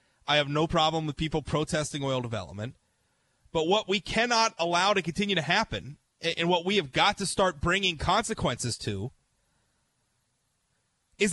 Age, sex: 30-49, male